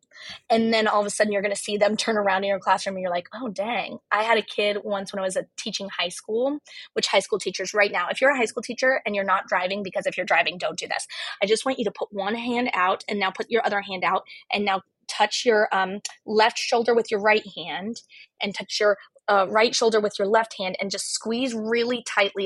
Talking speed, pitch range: 260 wpm, 200-265 Hz